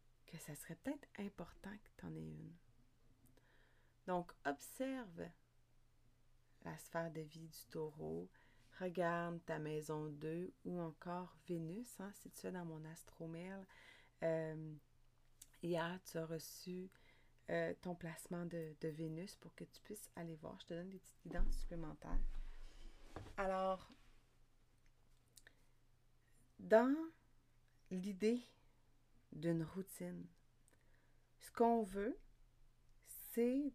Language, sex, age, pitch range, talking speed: French, female, 30-49, 150-195 Hz, 115 wpm